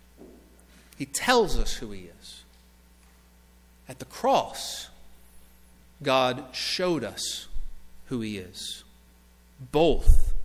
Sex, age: male, 50-69